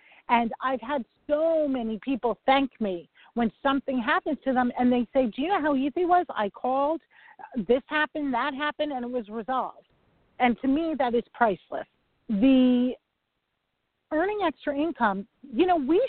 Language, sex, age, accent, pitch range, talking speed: English, female, 40-59, American, 235-310 Hz, 170 wpm